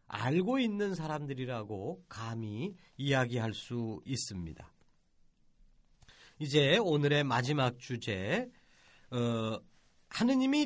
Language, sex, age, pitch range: Korean, male, 40-59, 125-205 Hz